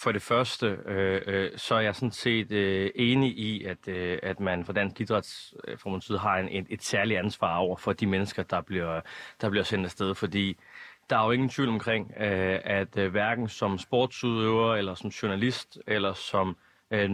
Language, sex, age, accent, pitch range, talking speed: Danish, male, 30-49, native, 95-120 Hz, 195 wpm